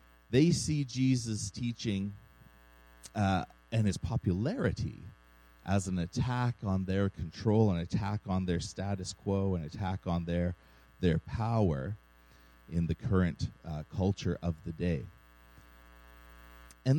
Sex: male